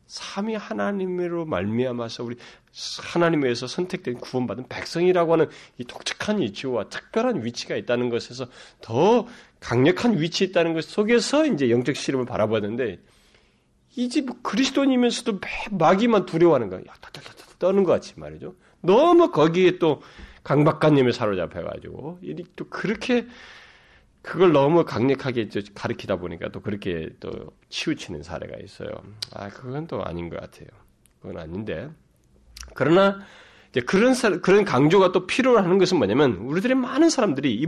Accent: native